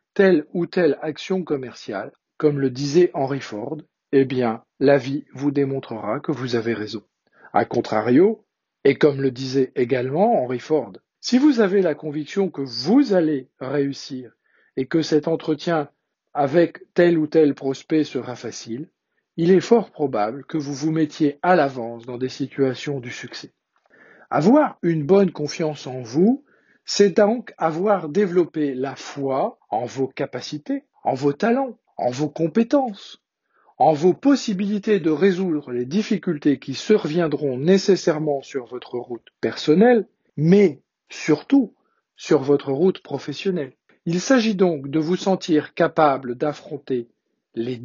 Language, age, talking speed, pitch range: French, 50-69, 145 wpm, 135-185 Hz